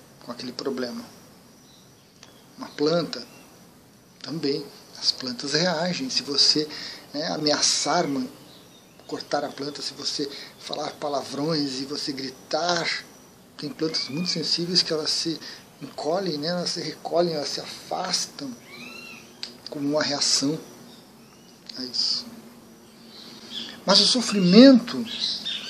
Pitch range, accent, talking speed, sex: 140-205 Hz, Brazilian, 110 wpm, male